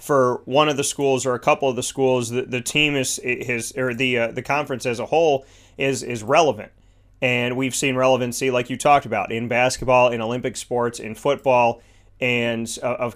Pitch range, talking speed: 120-140 Hz, 205 wpm